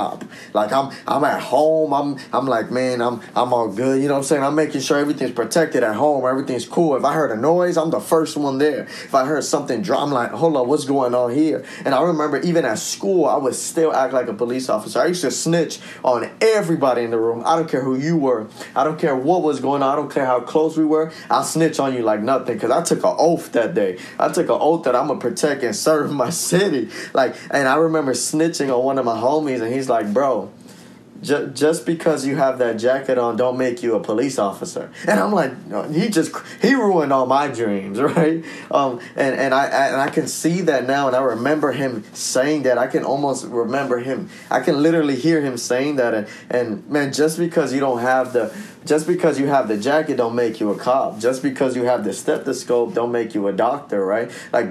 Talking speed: 240 wpm